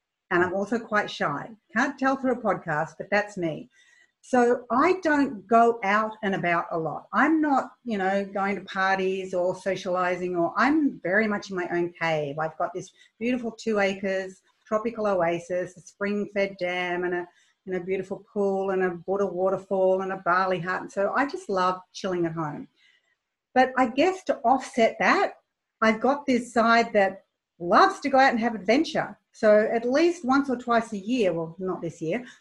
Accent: Australian